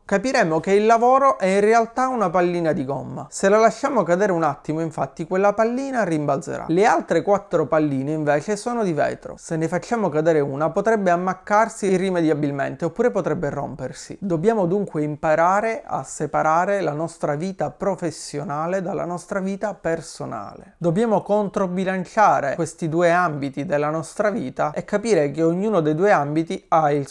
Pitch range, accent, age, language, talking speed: 160-210 Hz, native, 30-49, Italian, 155 wpm